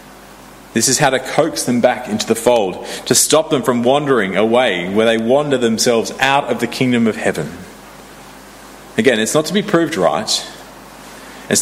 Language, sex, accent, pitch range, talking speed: English, male, Australian, 110-145 Hz, 175 wpm